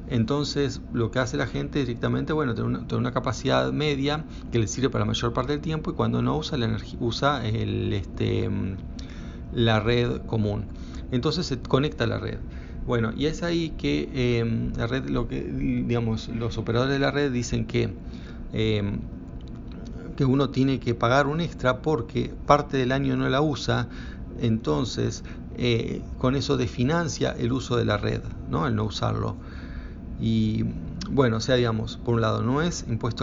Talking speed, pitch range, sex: 175 wpm, 105-130 Hz, male